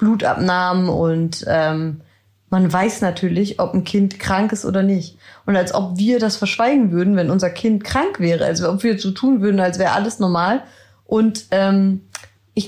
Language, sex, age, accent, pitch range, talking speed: German, female, 20-39, German, 165-215 Hz, 185 wpm